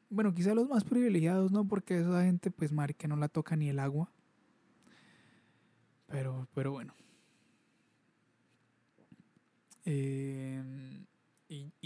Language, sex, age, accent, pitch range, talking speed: Spanish, male, 20-39, Colombian, 140-180 Hz, 110 wpm